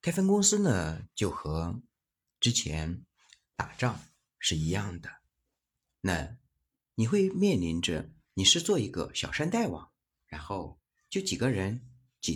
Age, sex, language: 50-69, male, Chinese